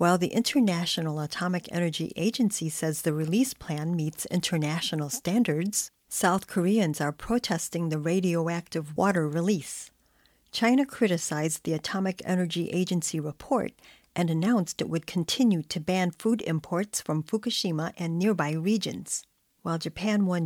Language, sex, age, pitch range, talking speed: English, female, 50-69, 165-205 Hz, 130 wpm